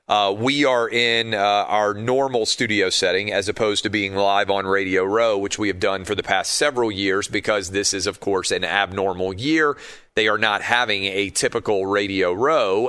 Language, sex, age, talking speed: English, male, 40-59, 195 wpm